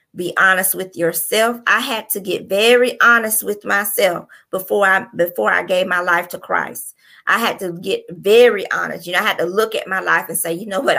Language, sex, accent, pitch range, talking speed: English, female, American, 180-215 Hz, 225 wpm